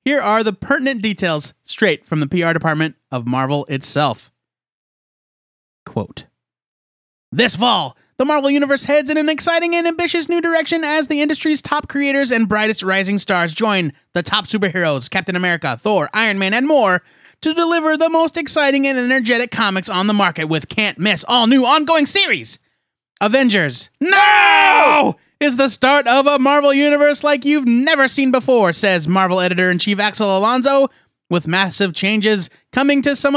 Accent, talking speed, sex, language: American, 160 wpm, male, English